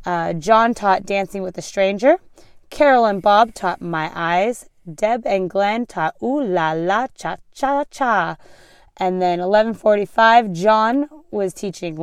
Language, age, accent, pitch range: English, 20-39, American, 180-230 Hz